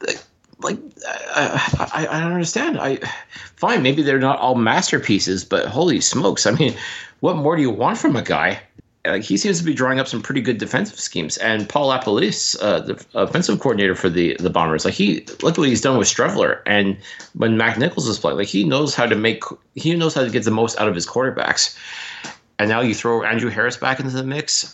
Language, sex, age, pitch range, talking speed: English, male, 30-49, 100-130 Hz, 225 wpm